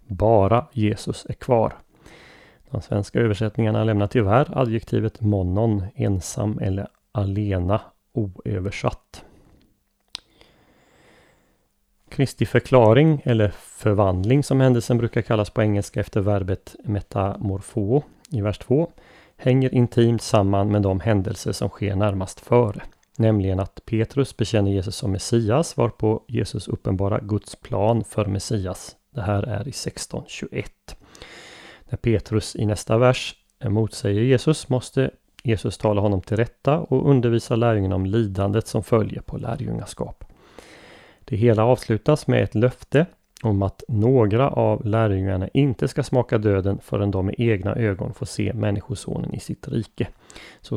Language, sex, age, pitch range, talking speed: Swedish, male, 30-49, 100-120 Hz, 130 wpm